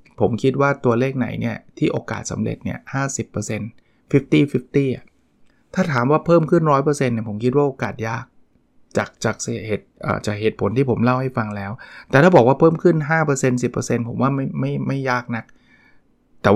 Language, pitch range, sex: Thai, 115-145 Hz, male